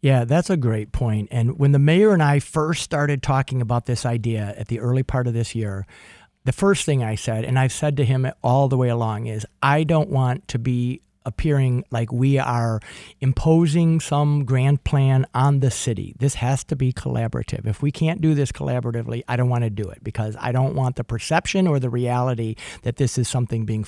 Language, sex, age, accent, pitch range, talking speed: English, male, 50-69, American, 115-145 Hz, 215 wpm